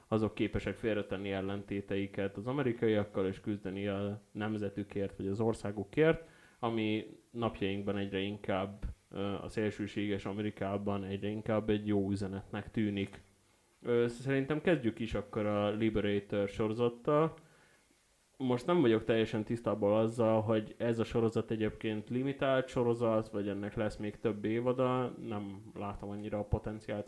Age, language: 20-39, Hungarian